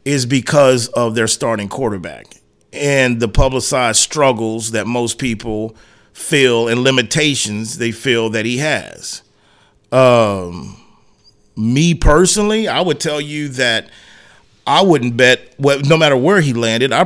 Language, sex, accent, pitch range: English, male, American, 110-135 Hz